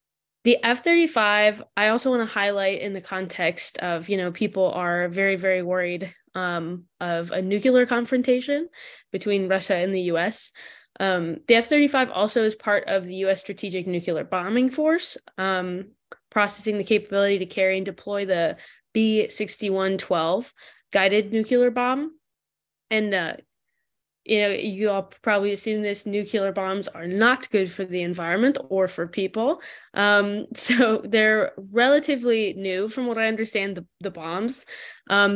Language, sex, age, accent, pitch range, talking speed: English, female, 10-29, American, 190-235 Hz, 150 wpm